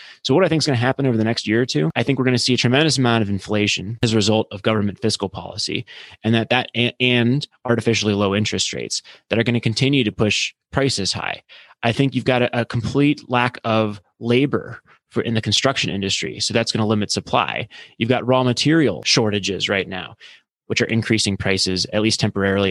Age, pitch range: 20-39, 100-120 Hz